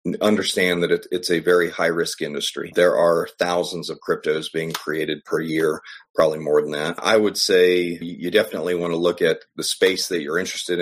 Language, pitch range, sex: English, 85-100 Hz, male